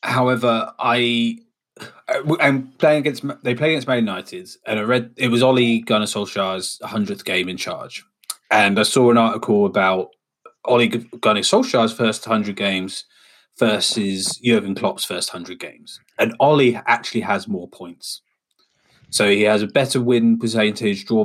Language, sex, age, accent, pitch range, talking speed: English, male, 20-39, British, 100-140 Hz, 155 wpm